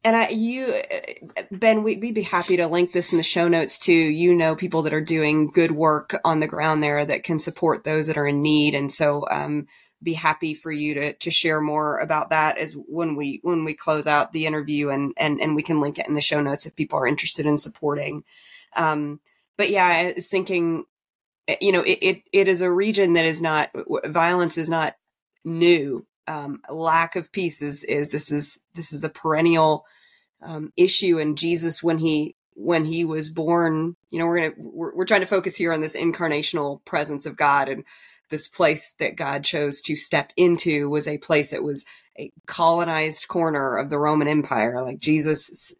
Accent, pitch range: American, 150-170 Hz